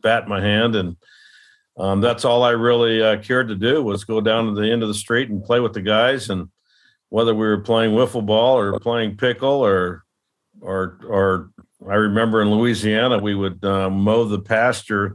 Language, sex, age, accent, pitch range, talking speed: English, male, 50-69, American, 100-115 Hz, 200 wpm